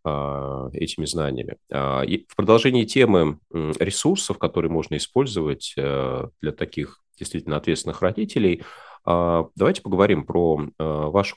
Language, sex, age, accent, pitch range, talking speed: Russian, male, 30-49, native, 80-105 Hz, 95 wpm